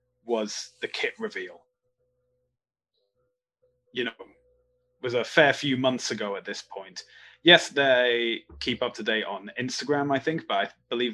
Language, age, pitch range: English, 20-39, 115-145 Hz